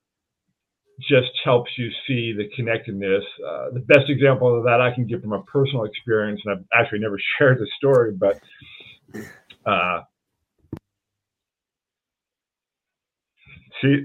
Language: English